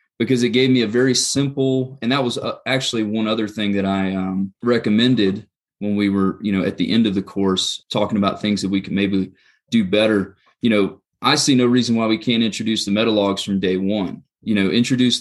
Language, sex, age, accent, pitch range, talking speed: English, male, 30-49, American, 100-115 Hz, 225 wpm